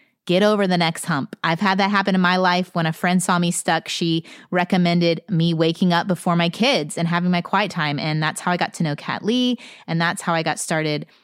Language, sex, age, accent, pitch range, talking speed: English, female, 30-49, American, 165-205 Hz, 245 wpm